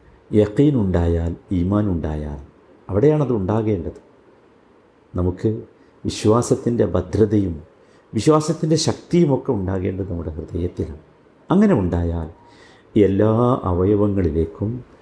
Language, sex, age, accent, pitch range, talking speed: Malayalam, male, 50-69, native, 90-110 Hz, 75 wpm